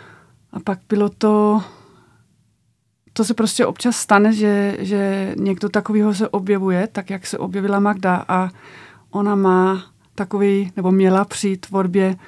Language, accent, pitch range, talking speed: Czech, native, 190-205 Hz, 135 wpm